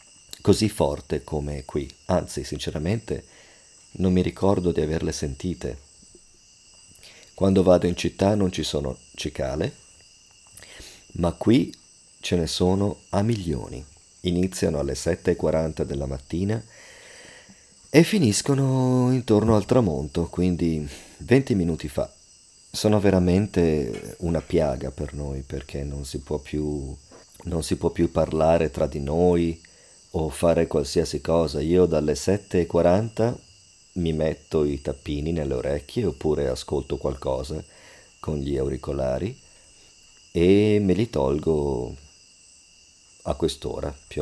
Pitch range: 75-95 Hz